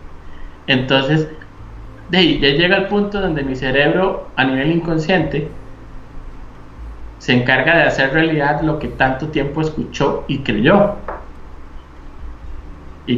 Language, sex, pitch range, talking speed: Spanish, male, 125-155 Hz, 110 wpm